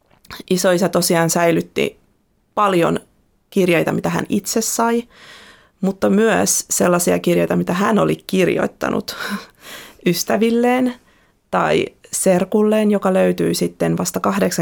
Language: Finnish